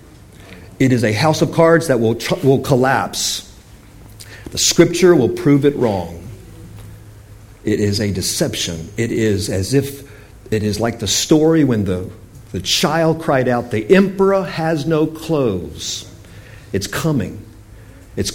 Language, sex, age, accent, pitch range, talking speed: English, male, 50-69, American, 105-155 Hz, 145 wpm